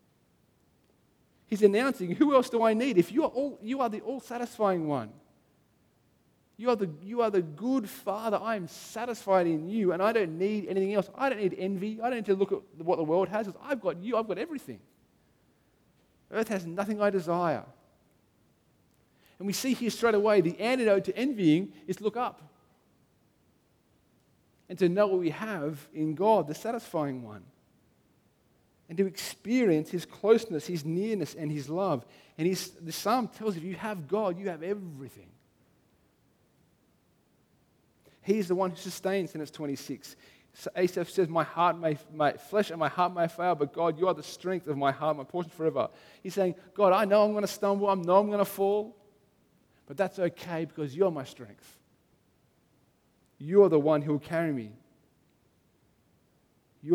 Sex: male